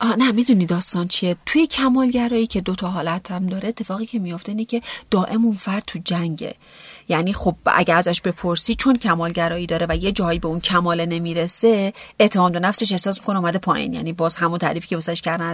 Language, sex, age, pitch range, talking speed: Persian, female, 30-49, 170-220 Hz, 195 wpm